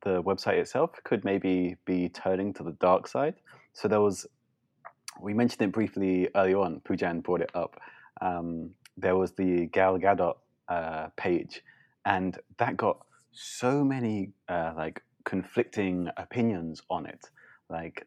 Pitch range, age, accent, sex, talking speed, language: 85-100 Hz, 30-49, British, male, 145 wpm, English